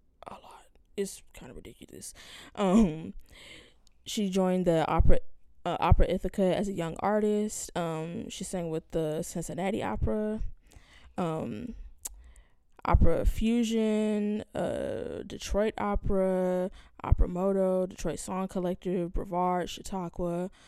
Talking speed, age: 105 wpm, 20-39